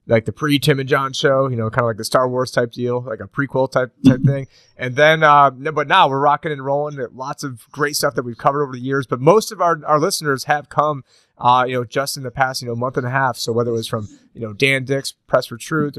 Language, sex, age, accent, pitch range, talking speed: English, male, 30-49, American, 125-150 Hz, 280 wpm